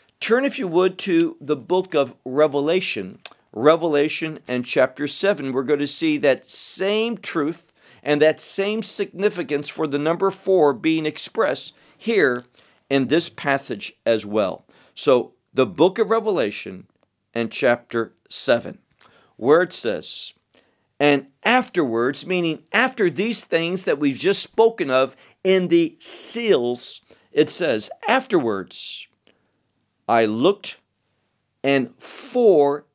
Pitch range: 130-190 Hz